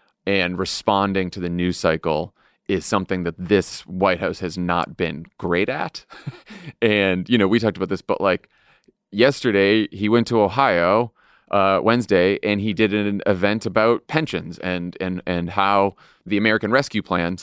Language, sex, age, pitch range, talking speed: English, male, 30-49, 100-130 Hz, 165 wpm